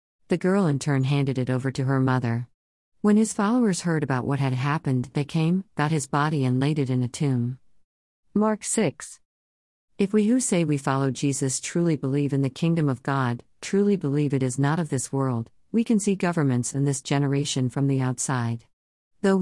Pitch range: 130-160 Hz